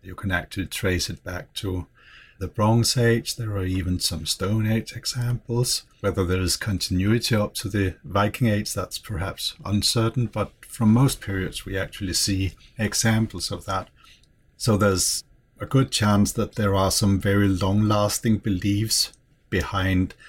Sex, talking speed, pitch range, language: male, 155 wpm, 90-110 Hz, English